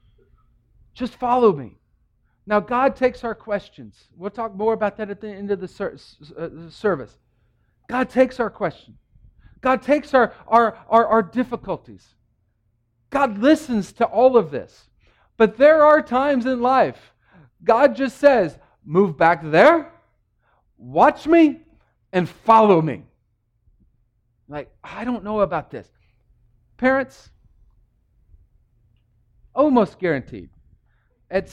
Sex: male